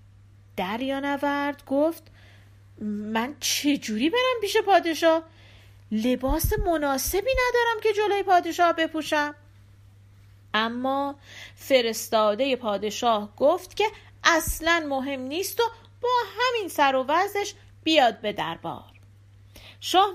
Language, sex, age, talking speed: Persian, female, 40-59, 100 wpm